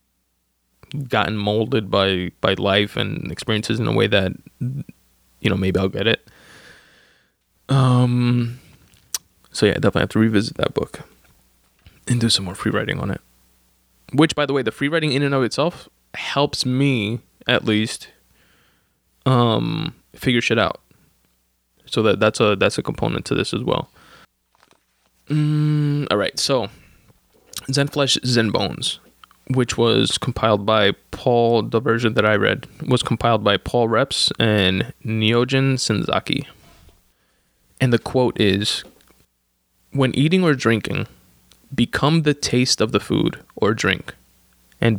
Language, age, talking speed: English, 20-39, 145 wpm